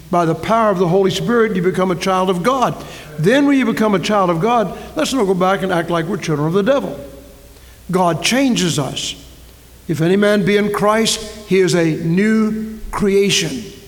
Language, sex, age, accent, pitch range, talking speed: English, male, 60-79, American, 155-200 Hz, 205 wpm